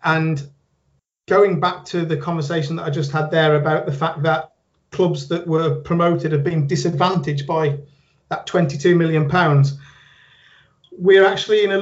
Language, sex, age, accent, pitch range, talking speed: English, male, 30-49, British, 155-185 Hz, 150 wpm